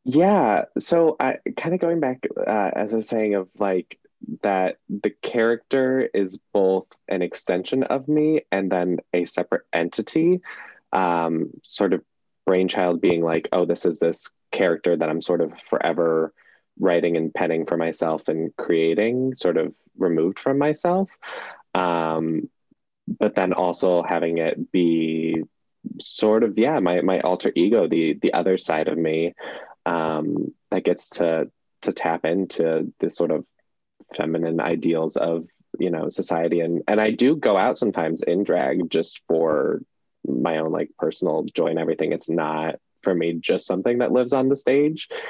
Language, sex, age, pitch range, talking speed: English, male, 20-39, 80-115 Hz, 160 wpm